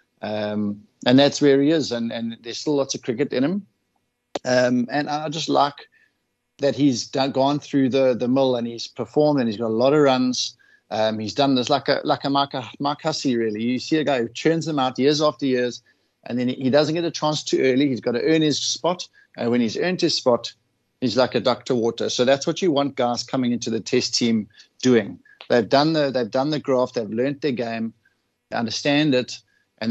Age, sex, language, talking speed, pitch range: 60-79, male, English, 230 wpm, 120-140 Hz